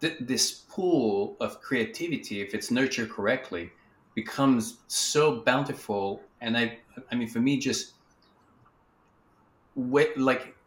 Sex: male